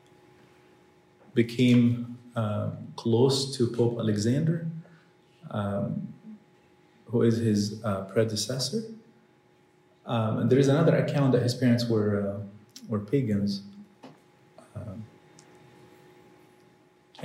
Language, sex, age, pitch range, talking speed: English, male, 30-49, 105-125 Hz, 90 wpm